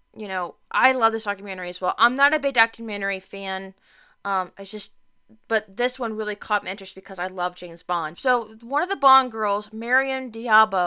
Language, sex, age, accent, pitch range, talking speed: English, female, 20-39, American, 190-230 Hz, 205 wpm